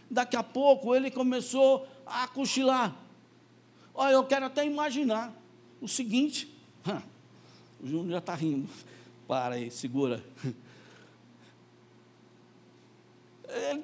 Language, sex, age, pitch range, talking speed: Portuguese, male, 60-79, 185-260 Hz, 100 wpm